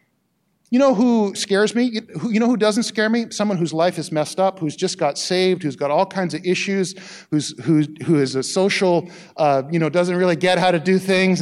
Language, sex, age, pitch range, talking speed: English, male, 40-59, 140-190 Hz, 225 wpm